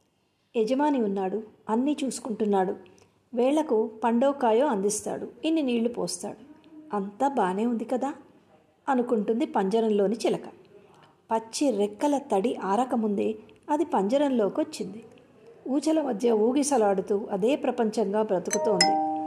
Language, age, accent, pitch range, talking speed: Telugu, 50-69, native, 210-265 Hz, 95 wpm